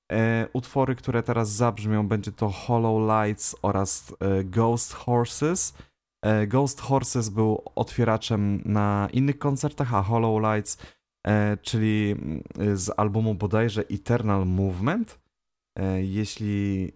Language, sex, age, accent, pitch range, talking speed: Polish, male, 20-39, native, 100-115 Hz, 100 wpm